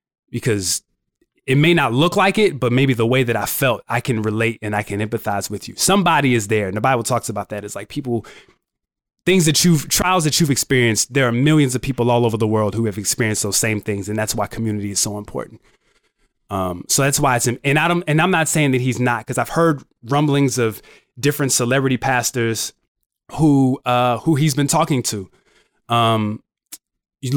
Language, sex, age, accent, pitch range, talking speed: English, male, 20-39, American, 115-145 Hz, 215 wpm